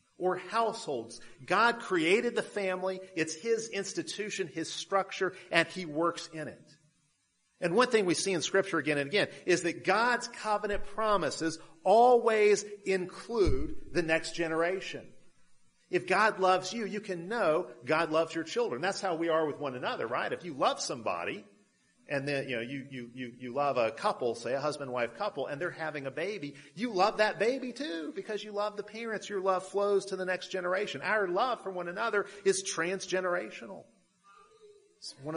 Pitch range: 150-200 Hz